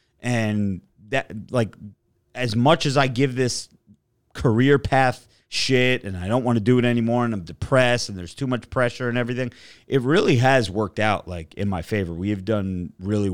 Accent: American